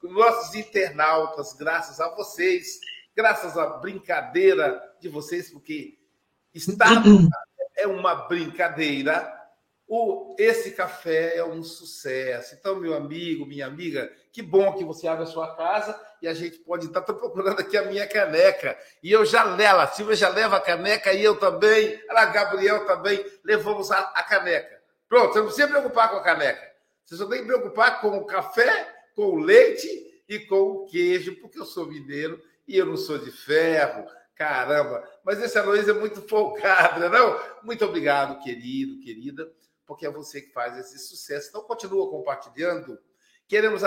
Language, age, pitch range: Portuguese, 60-79, 165-270 Hz